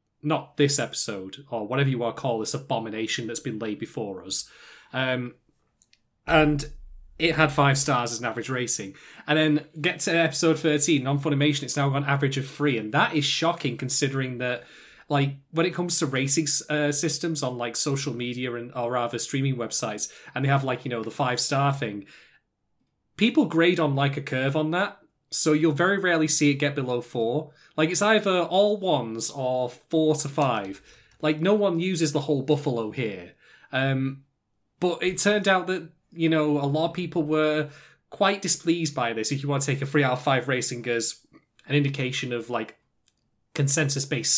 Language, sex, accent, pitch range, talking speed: English, male, British, 125-155 Hz, 190 wpm